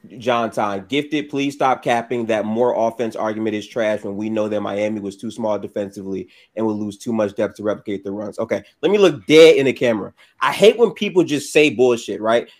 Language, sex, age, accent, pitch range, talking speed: English, male, 20-39, American, 125-200 Hz, 225 wpm